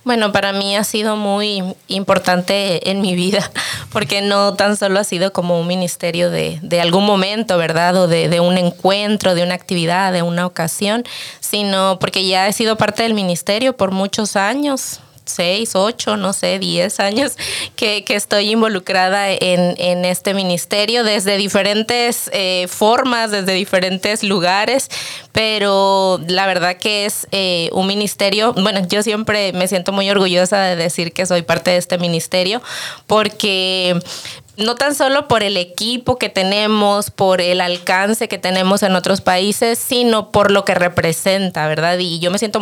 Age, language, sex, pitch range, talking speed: 20-39, English, female, 180-205 Hz, 165 wpm